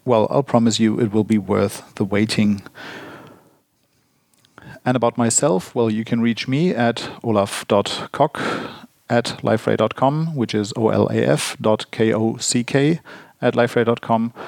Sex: male